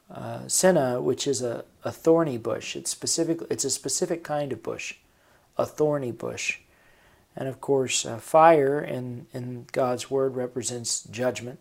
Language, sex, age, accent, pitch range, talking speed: English, male, 40-59, American, 120-140 Hz, 155 wpm